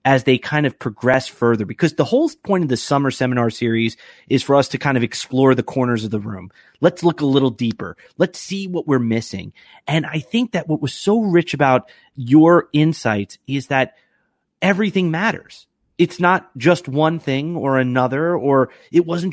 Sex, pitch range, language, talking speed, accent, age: male, 130-175 Hz, English, 195 wpm, American, 30-49